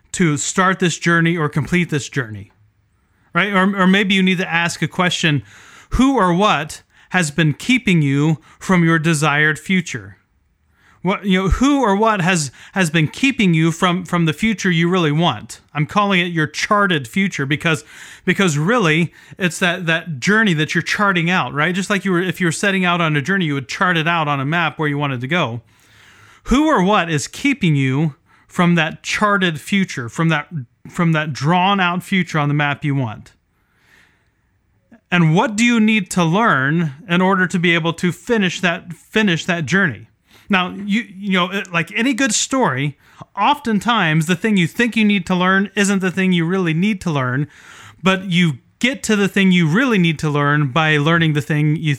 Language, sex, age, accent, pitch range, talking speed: English, male, 30-49, American, 150-190 Hz, 195 wpm